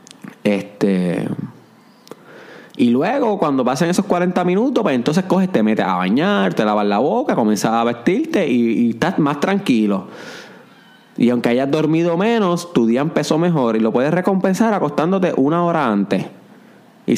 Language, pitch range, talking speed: Spanish, 130-210 Hz, 155 wpm